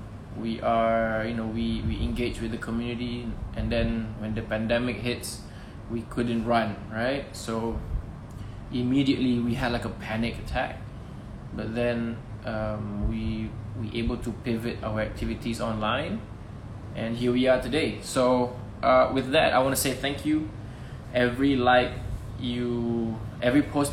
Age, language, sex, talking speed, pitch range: 20-39, English, male, 150 wpm, 110-125 Hz